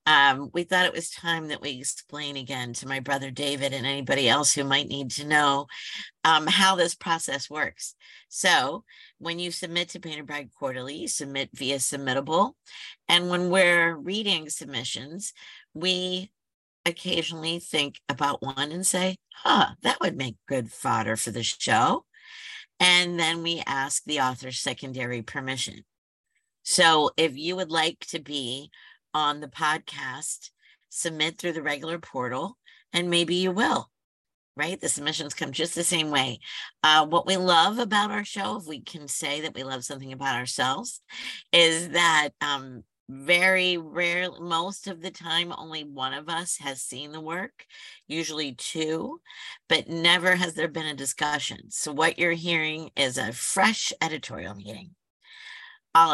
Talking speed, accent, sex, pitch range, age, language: 160 wpm, American, female, 140-180 Hz, 50-69, English